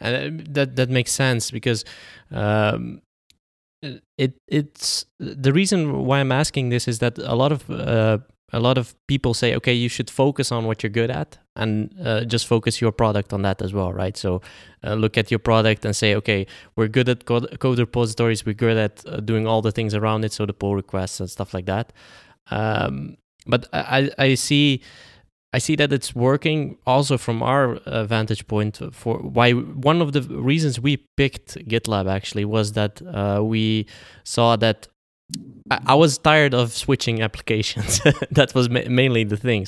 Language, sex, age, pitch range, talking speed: English, male, 20-39, 105-130 Hz, 185 wpm